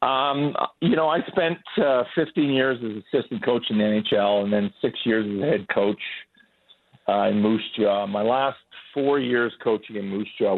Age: 50-69